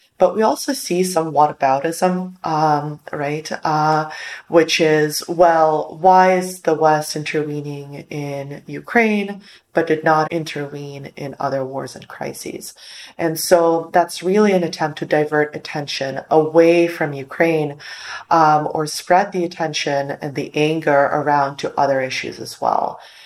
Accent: American